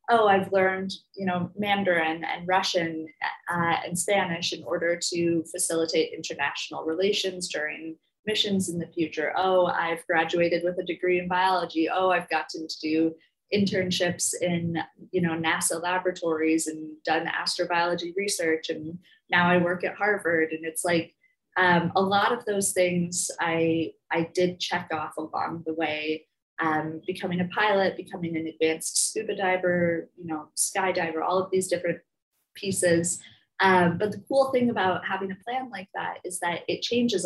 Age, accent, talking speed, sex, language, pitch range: 20-39, American, 155 wpm, female, English, 165-190 Hz